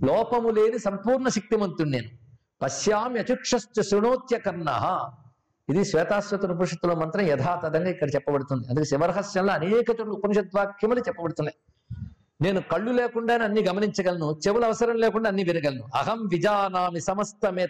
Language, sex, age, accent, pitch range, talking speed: Telugu, male, 50-69, native, 155-215 Hz, 95 wpm